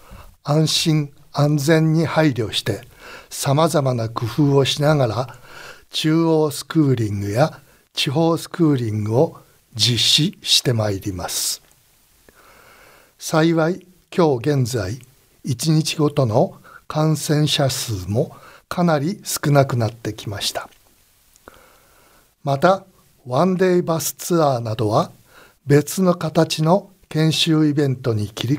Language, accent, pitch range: Japanese, native, 120-160 Hz